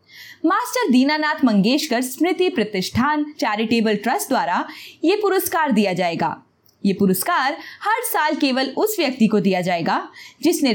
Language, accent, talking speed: Hindi, native, 130 wpm